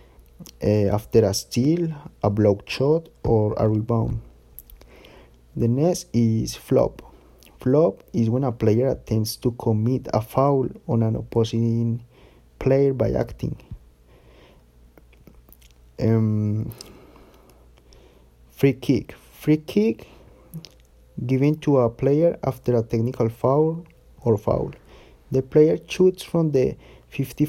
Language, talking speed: English, 110 wpm